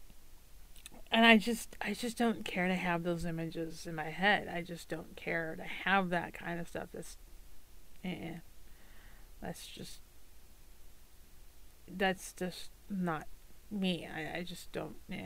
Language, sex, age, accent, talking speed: English, female, 30-49, American, 150 wpm